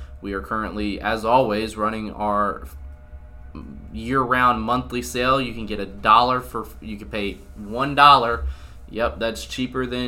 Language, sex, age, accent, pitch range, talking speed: English, male, 20-39, American, 95-120 Hz, 150 wpm